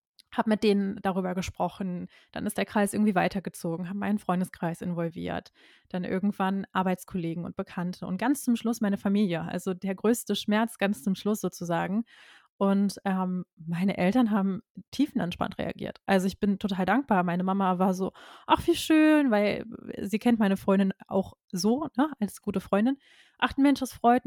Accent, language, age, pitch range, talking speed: German, German, 20-39, 190-220 Hz, 165 wpm